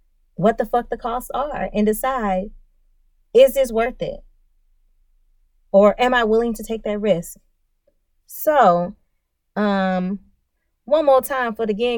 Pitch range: 175-230 Hz